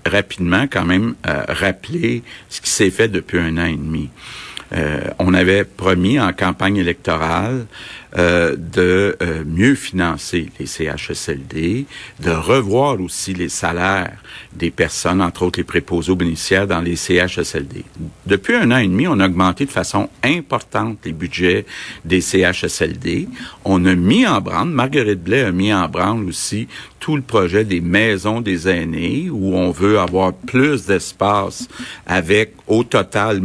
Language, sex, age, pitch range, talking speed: French, male, 60-79, 90-105 Hz, 155 wpm